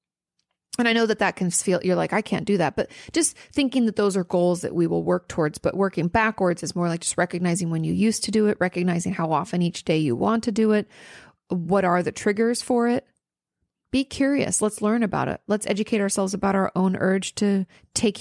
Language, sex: English, female